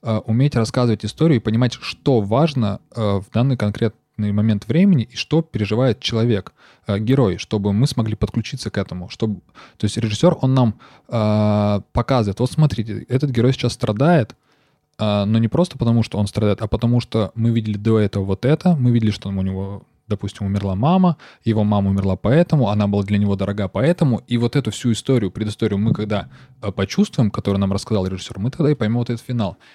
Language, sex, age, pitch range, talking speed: Russian, male, 20-39, 100-125 Hz, 185 wpm